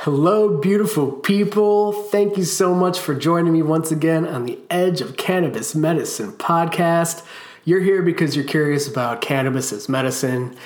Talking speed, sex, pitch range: 160 wpm, male, 130-160 Hz